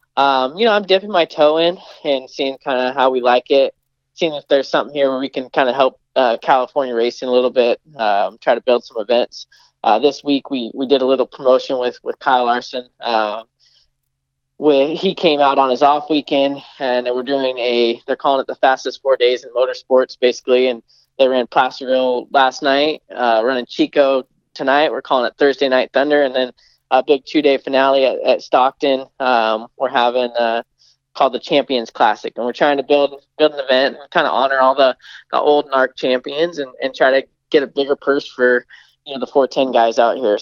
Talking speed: 210 wpm